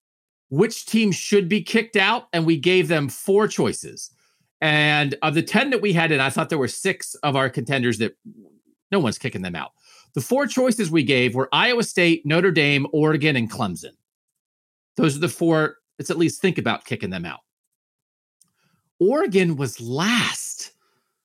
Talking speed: 175 wpm